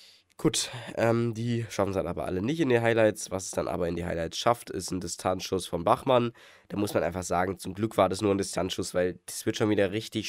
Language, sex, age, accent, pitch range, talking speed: German, male, 20-39, German, 95-115 Hz, 250 wpm